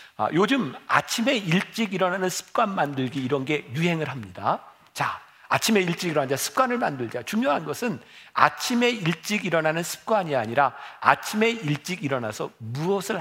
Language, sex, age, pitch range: Korean, male, 50-69, 135-205 Hz